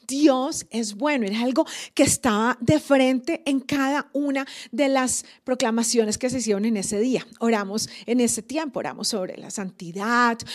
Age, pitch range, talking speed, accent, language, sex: 30-49, 220-275 Hz, 165 wpm, Colombian, Spanish, female